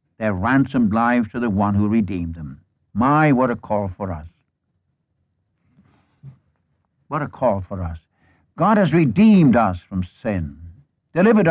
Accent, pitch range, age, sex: American, 95-145 Hz, 60-79, male